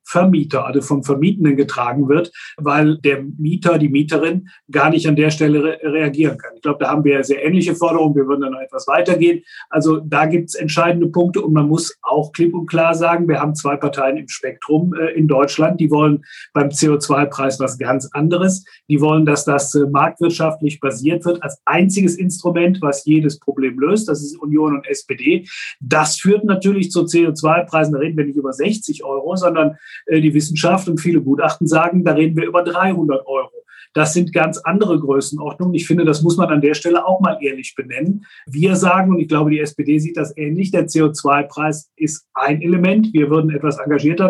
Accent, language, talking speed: German, German, 195 wpm